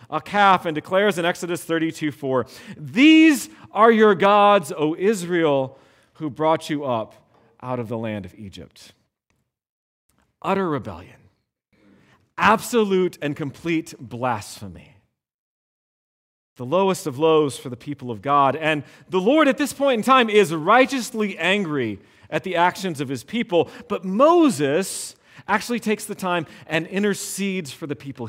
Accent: American